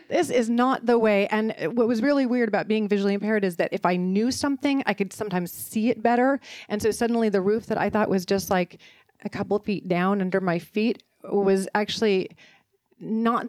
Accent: American